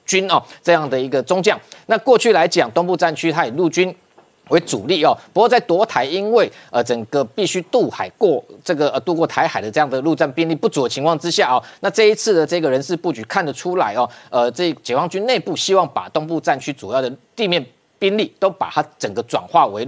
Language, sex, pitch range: Chinese, male, 135-180 Hz